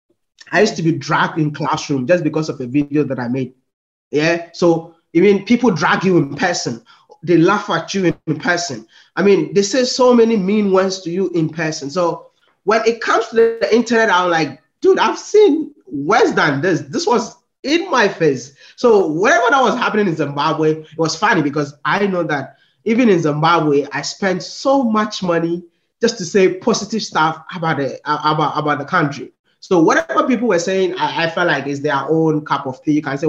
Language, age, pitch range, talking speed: English, 20-39, 150-215 Hz, 205 wpm